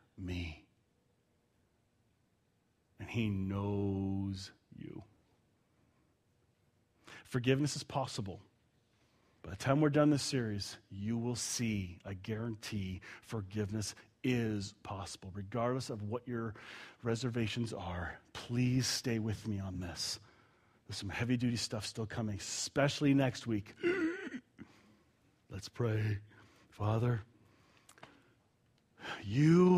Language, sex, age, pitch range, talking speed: English, male, 40-59, 105-150 Hz, 95 wpm